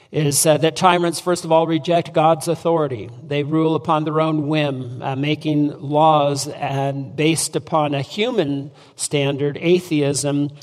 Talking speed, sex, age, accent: 140 wpm, male, 50-69, American